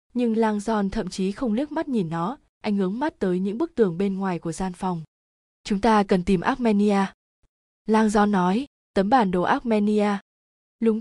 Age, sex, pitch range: 20-39, female, 190-230 Hz